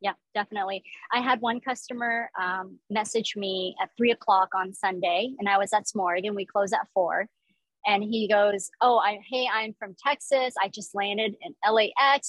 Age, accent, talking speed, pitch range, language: 30-49, American, 185 wpm, 200-245 Hz, English